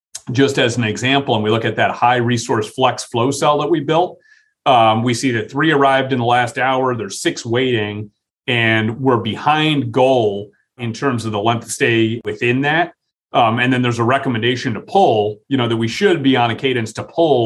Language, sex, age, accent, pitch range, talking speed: English, male, 40-59, American, 110-135 Hz, 215 wpm